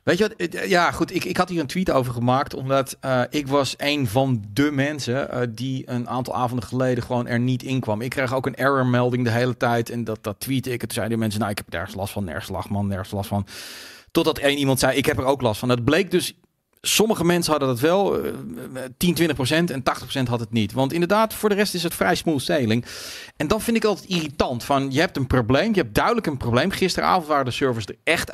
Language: Dutch